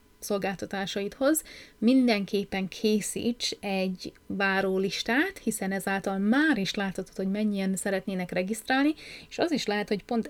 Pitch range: 195-225 Hz